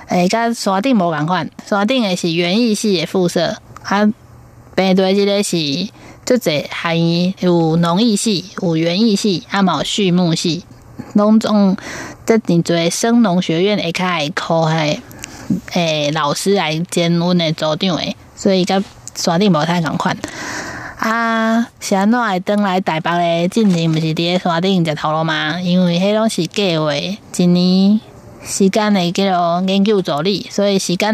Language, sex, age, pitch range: Chinese, female, 20-39, 165-205 Hz